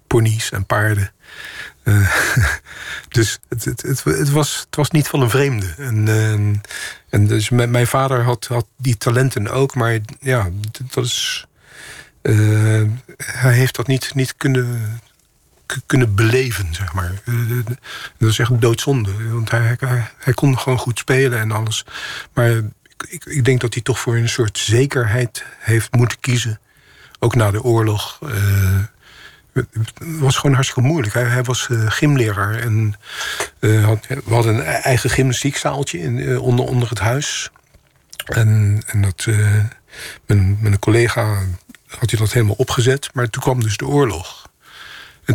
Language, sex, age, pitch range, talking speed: Dutch, male, 50-69, 110-130 Hz, 155 wpm